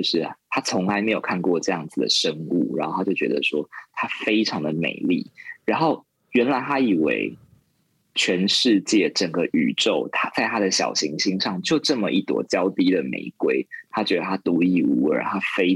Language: Chinese